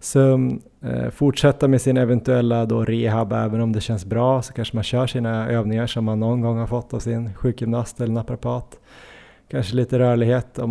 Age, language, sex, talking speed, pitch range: 20-39, Swedish, male, 185 wpm, 110-125 Hz